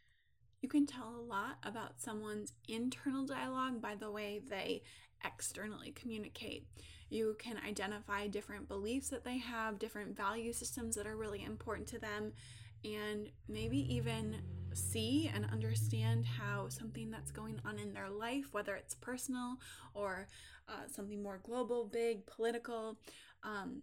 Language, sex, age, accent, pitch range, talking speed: English, female, 20-39, American, 200-235 Hz, 145 wpm